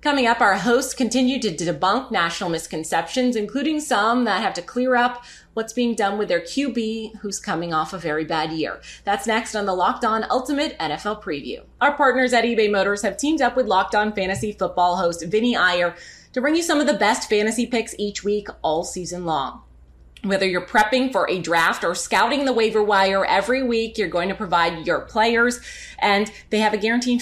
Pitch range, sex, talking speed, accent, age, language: 180-230 Hz, female, 205 wpm, American, 20-39, English